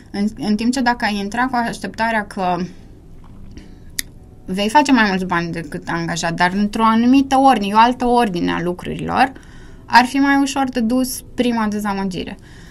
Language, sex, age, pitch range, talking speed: Romanian, female, 20-39, 195-245 Hz, 160 wpm